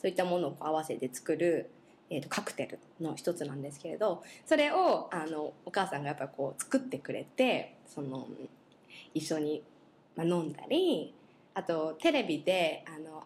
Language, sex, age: Japanese, female, 20-39